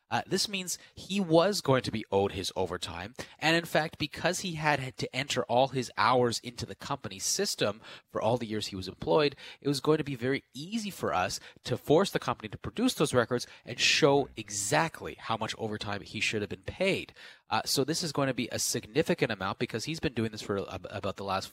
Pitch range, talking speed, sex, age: 100-145 Hz, 225 wpm, male, 30-49